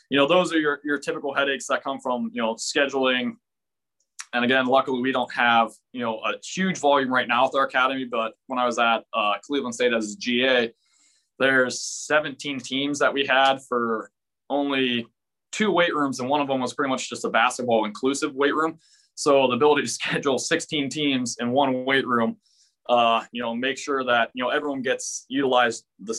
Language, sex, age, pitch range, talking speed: English, male, 20-39, 120-140 Hz, 200 wpm